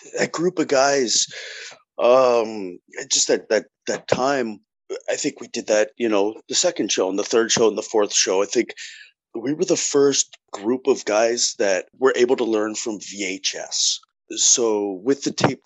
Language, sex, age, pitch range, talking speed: English, male, 30-49, 100-160 Hz, 185 wpm